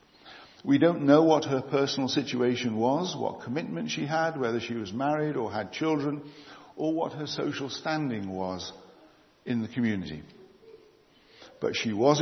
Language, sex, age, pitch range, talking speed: English, male, 60-79, 115-150 Hz, 150 wpm